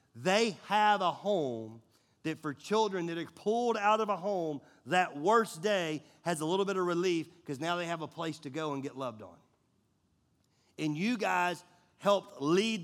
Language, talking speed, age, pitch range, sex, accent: English, 185 wpm, 40-59, 125-175 Hz, male, American